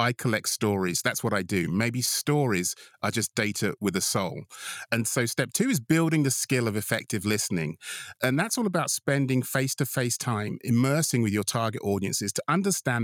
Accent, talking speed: British, 185 wpm